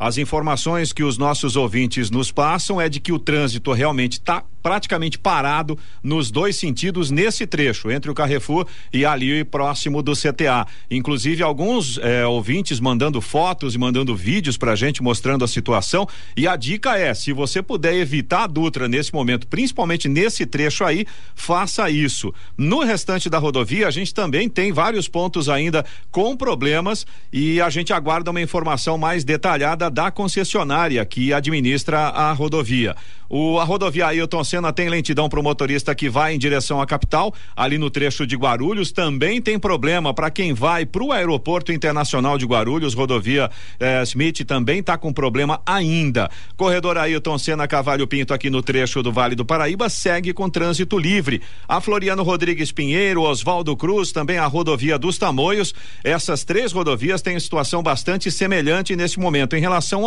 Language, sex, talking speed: Portuguese, male, 165 wpm